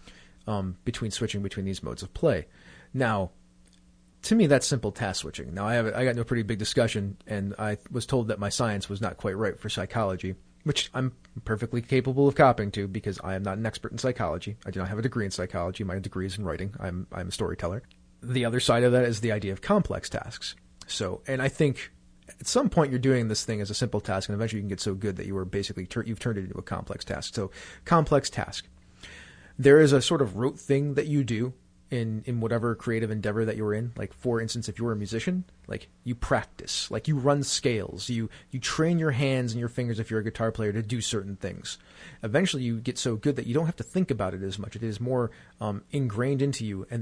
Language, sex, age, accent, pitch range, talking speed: English, male, 30-49, American, 100-130 Hz, 240 wpm